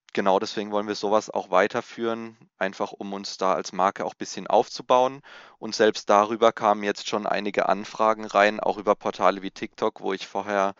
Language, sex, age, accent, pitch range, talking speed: German, male, 20-39, German, 95-105 Hz, 190 wpm